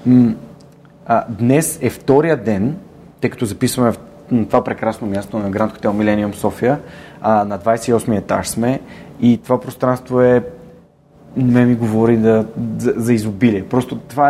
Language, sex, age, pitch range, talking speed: Bulgarian, male, 30-49, 110-140 Hz, 145 wpm